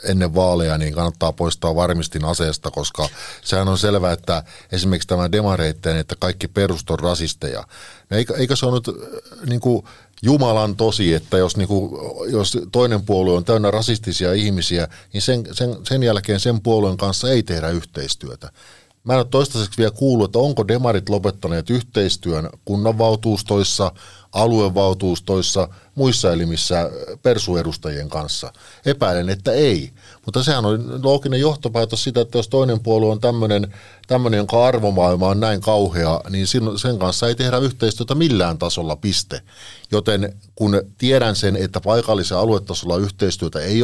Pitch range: 90-115 Hz